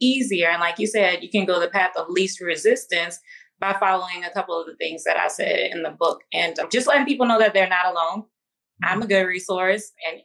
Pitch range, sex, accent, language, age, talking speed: 175-215 Hz, female, American, English, 20-39, 235 wpm